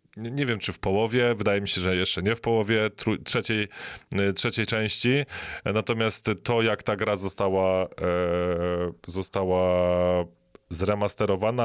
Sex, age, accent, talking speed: male, 20-39, native, 125 wpm